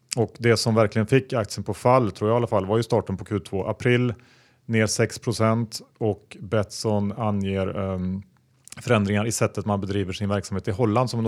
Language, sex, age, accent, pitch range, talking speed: Swedish, male, 30-49, Norwegian, 100-120 Hz, 190 wpm